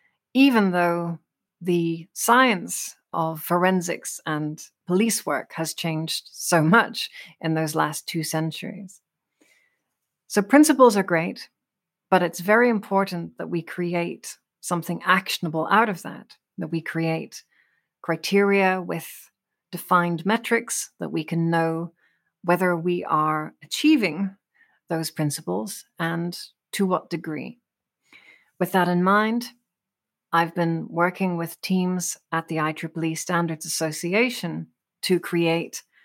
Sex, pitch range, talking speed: female, 165-195 Hz, 120 wpm